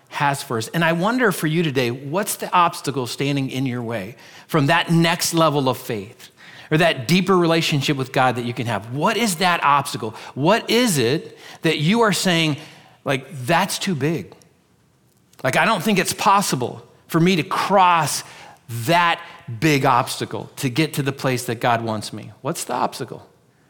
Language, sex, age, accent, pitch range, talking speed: English, male, 40-59, American, 135-180 Hz, 180 wpm